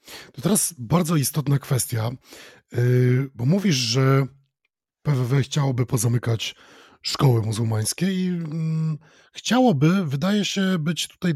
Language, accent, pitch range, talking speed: Polish, native, 125-155 Hz, 100 wpm